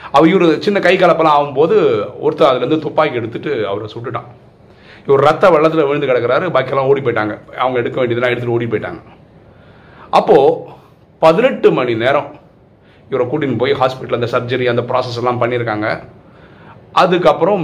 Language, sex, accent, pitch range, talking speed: Tamil, male, native, 120-160 Hz, 145 wpm